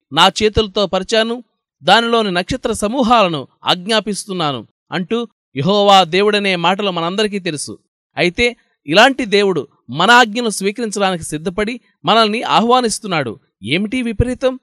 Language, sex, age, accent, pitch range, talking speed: Telugu, male, 20-39, native, 180-230 Hz, 100 wpm